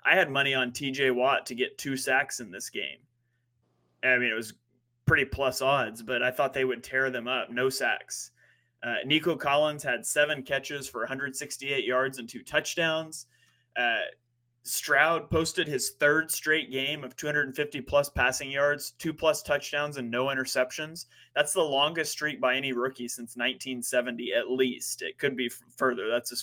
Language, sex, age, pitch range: English, male, 20-39, 120-140 Hz